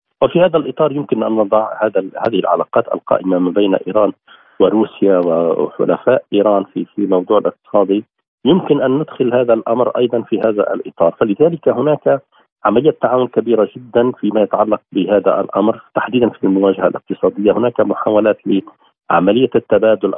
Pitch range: 95-120 Hz